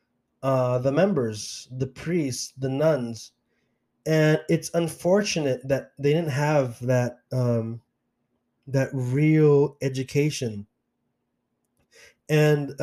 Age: 20-39